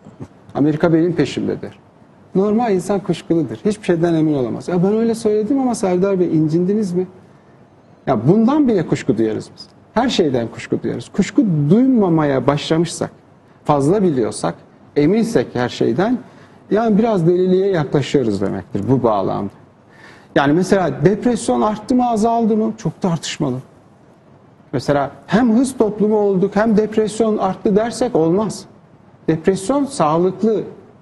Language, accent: Turkish, native